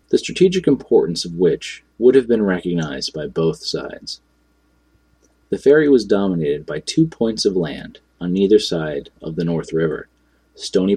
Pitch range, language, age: 85-125 Hz, English, 30-49